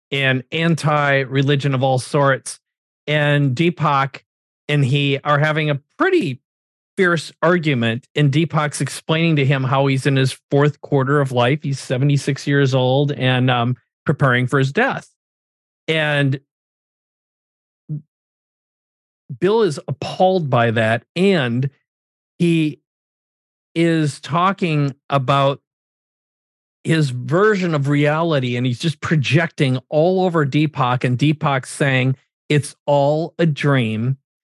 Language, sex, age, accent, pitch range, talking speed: English, male, 40-59, American, 135-155 Hz, 115 wpm